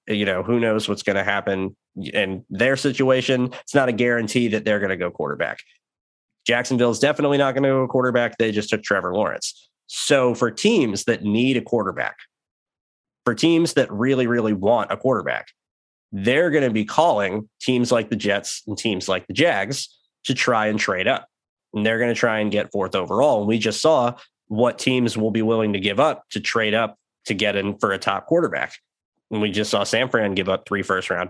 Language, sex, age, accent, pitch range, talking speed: English, male, 20-39, American, 100-120 Hz, 210 wpm